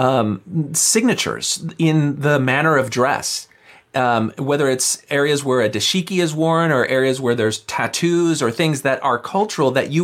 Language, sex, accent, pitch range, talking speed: English, male, American, 120-160 Hz, 165 wpm